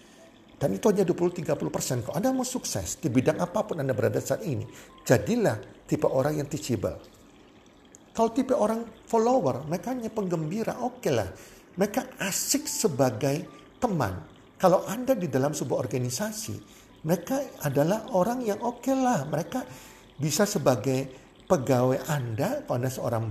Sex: male